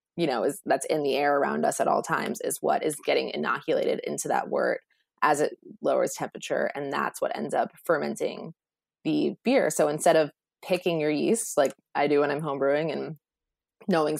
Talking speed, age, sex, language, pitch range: 195 wpm, 20-39, female, English, 145-200 Hz